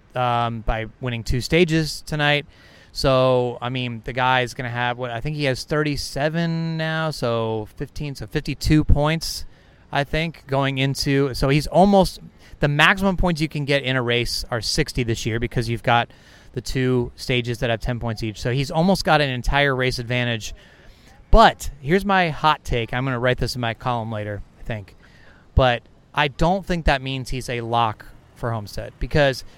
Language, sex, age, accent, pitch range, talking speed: English, male, 30-49, American, 120-155 Hz, 190 wpm